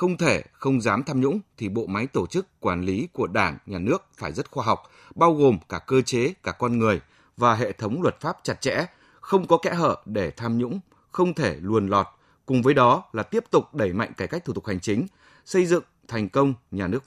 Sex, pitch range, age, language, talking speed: male, 95-140 Hz, 20-39, Vietnamese, 235 wpm